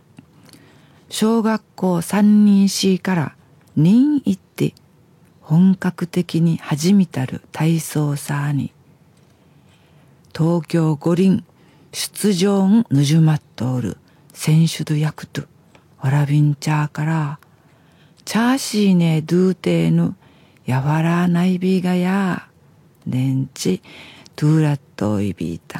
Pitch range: 145-185 Hz